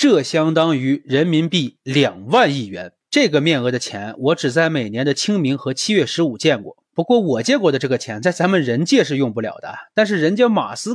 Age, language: 30-49, Chinese